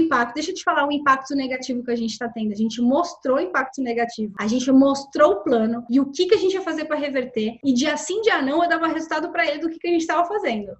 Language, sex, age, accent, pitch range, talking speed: Portuguese, female, 10-29, Brazilian, 245-320 Hz, 285 wpm